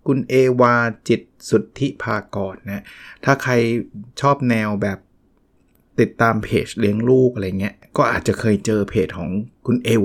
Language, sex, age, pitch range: Thai, male, 20-39, 100-125 Hz